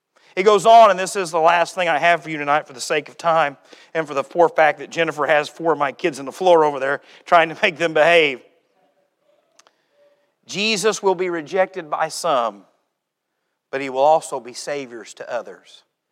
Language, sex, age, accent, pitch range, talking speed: English, male, 40-59, American, 155-190 Hz, 205 wpm